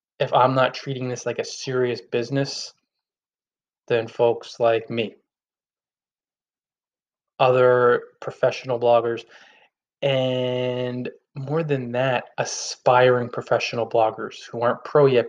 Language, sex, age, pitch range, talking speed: English, male, 20-39, 125-155 Hz, 105 wpm